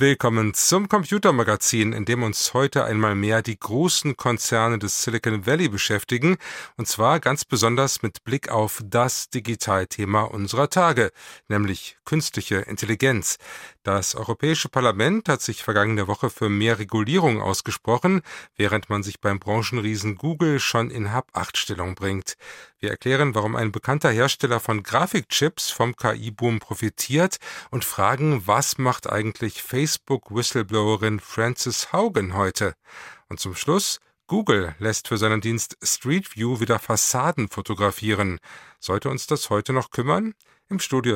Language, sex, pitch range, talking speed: German, male, 105-135 Hz, 135 wpm